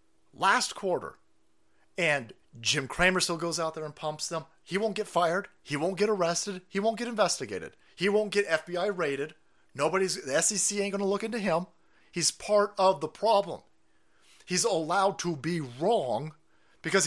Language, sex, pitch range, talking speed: English, male, 150-195 Hz, 170 wpm